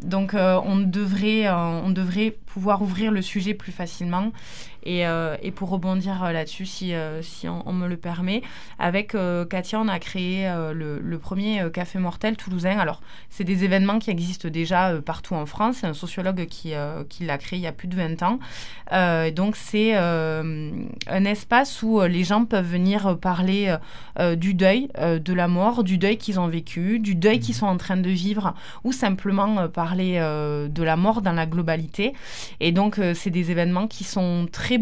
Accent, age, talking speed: French, 20-39, 200 wpm